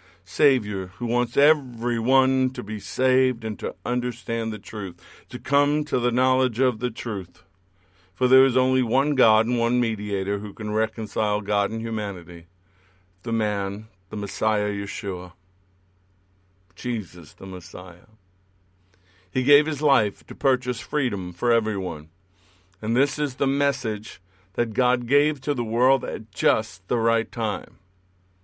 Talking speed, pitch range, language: 145 wpm, 95-140 Hz, English